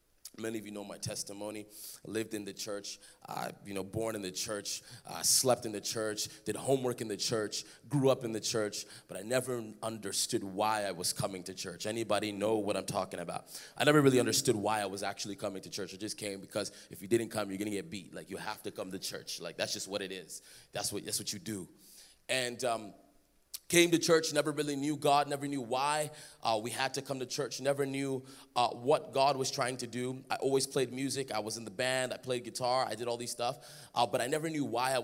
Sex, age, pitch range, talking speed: male, 20-39, 105-135 Hz, 245 wpm